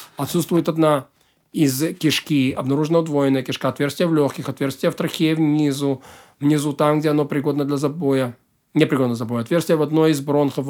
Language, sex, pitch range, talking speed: Russian, male, 145-170 Hz, 170 wpm